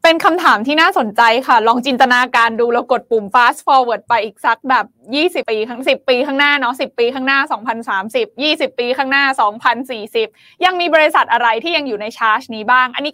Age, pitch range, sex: 20-39, 230-310 Hz, female